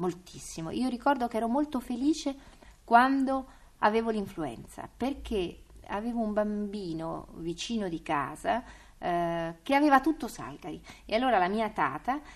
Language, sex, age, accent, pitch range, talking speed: Italian, female, 30-49, native, 170-265 Hz, 130 wpm